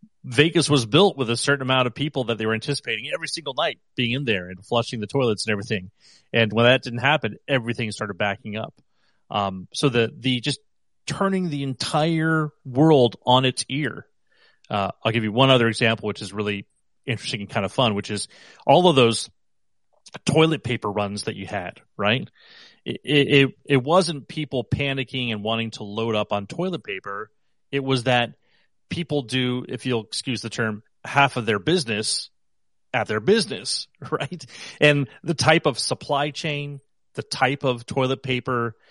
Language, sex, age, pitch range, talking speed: English, male, 30-49, 110-140 Hz, 180 wpm